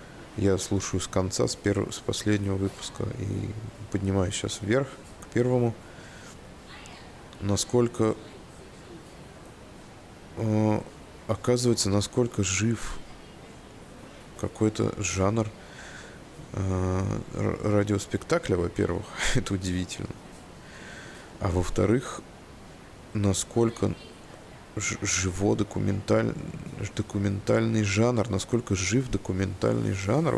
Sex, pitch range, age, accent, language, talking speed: male, 95-115 Hz, 20-39, native, Russian, 75 wpm